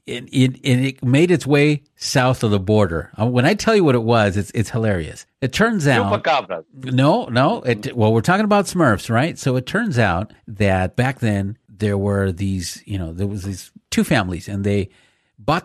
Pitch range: 100-130 Hz